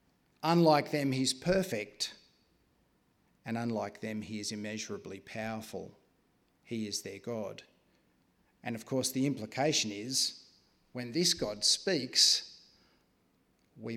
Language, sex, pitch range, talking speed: English, male, 110-135 Hz, 110 wpm